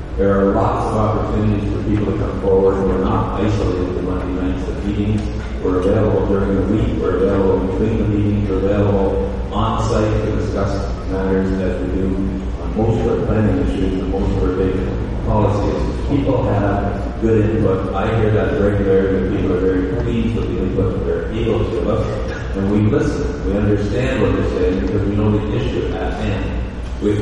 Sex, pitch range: male, 95-105 Hz